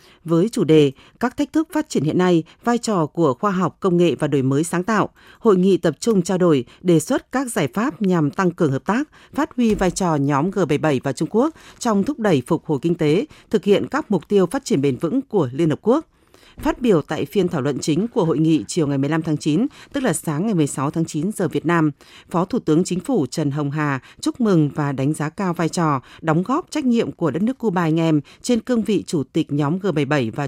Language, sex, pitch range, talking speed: Vietnamese, female, 155-215 Hz, 250 wpm